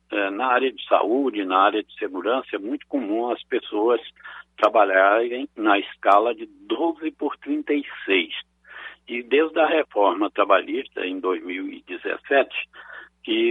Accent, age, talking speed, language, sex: Brazilian, 60-79, 120 wpm, Portuguese, male